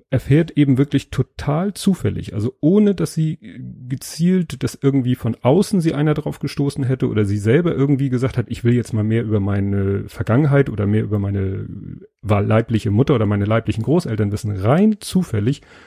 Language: German